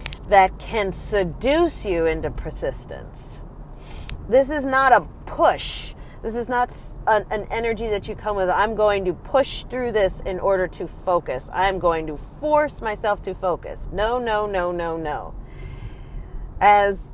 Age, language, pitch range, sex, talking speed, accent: 40-59, English, 175-265 Hz, female, 150 wpm, American